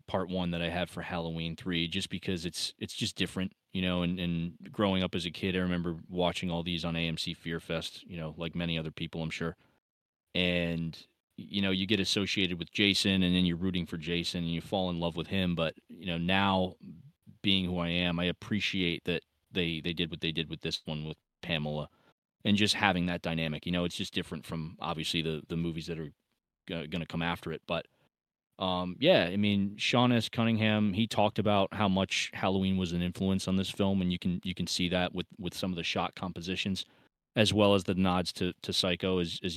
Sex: male